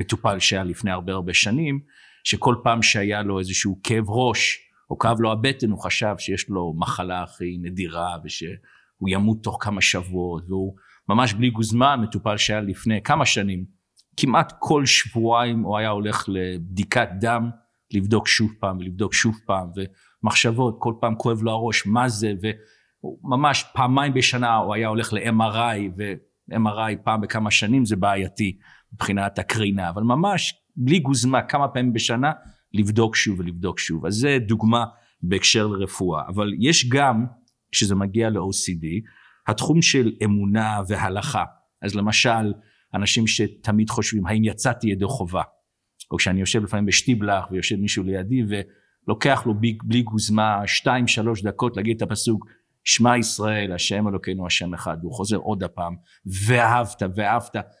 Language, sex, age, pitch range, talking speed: Hebrew, male, 50-69, 100-115 Hz, 140 wpm